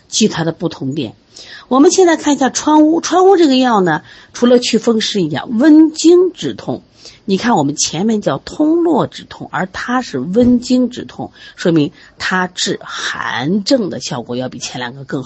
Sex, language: female, Chinese